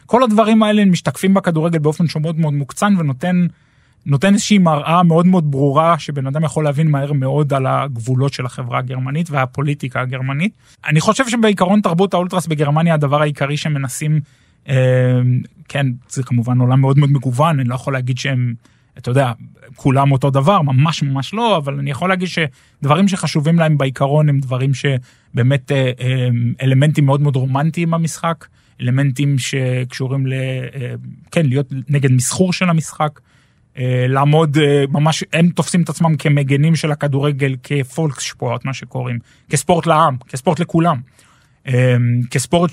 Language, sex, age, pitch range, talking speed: Hebrew, male, 20-39, 135-165 Hz, 145 wpm